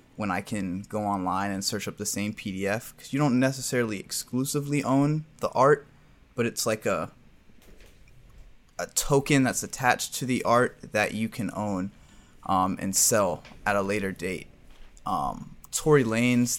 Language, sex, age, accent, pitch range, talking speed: English, male, 20-39, American, 105-130 Hz, 160 wpm